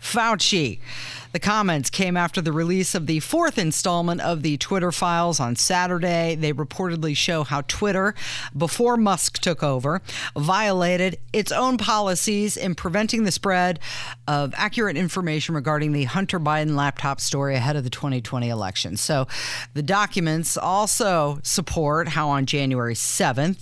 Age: 50-69